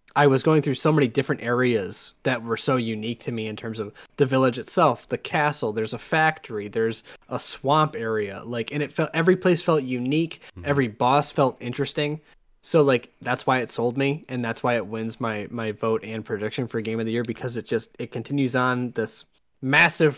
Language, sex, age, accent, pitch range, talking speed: English, male, 20-39, American, 115-140 Hz, 210 wpm